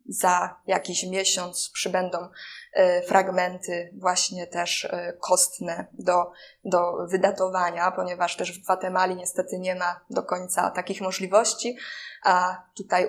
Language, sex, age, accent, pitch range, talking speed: Polish, female, 20-39, native, 180-220 Hz, 110 wpm